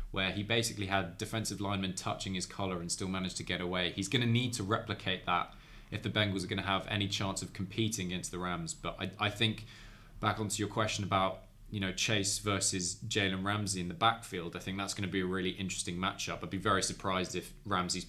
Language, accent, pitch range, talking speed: English, British, 90-105 Hz, 230 wpm